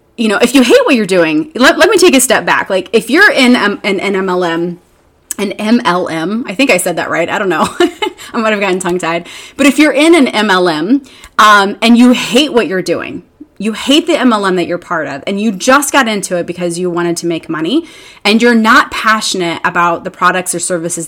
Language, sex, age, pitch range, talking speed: English, female, 30-49, 180-260 Hz, 235 wpm